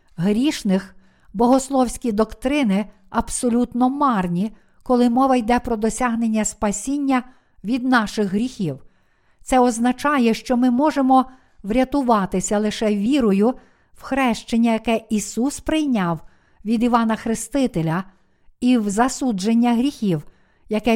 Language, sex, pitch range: Ukrainian, female, 210-255 Hz